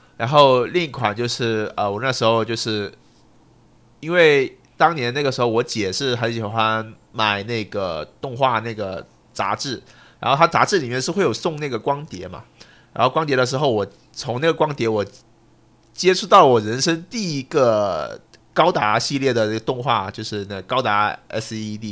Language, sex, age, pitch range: Chinese, male, 30-49, 105-125 Hz